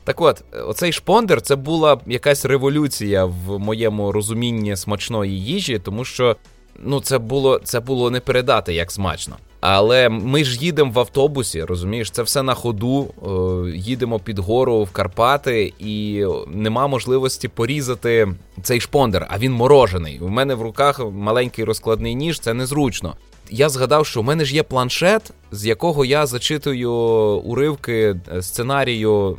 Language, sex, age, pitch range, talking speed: Ukrainian, male, 20-39, 105-140 Hz, 145 wpm